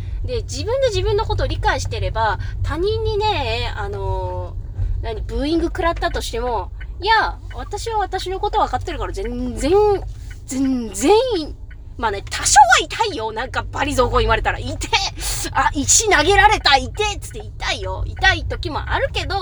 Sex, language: female, Japanese